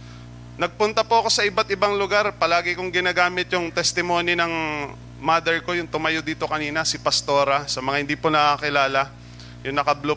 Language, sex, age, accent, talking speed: Filipino, male, 20-39, native, 160 wpm